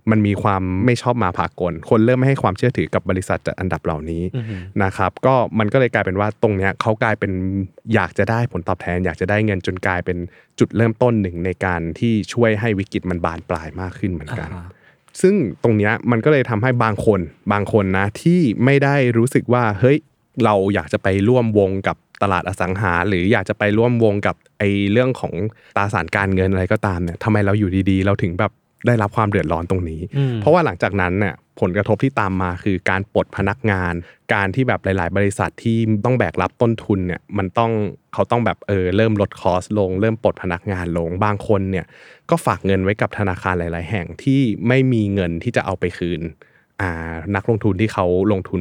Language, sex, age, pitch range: Thai, male, 20-39, 95-115 Hz